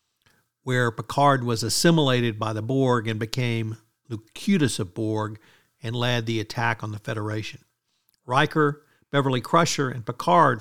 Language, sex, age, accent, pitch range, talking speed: English, male, 50-69, American, 115-145 Hz, 135 wpm